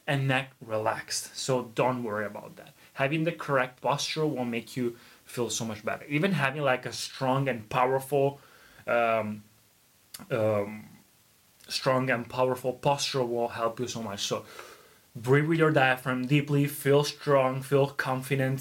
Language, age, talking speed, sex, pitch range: Italian, 20-39, 150 wpm, male, 120-145 Hz